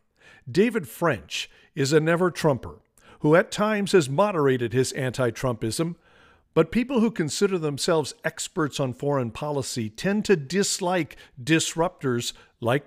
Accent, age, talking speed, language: American, 50-69, 120 wpm, English